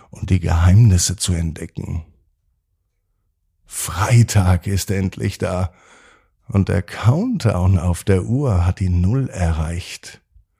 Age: 50-69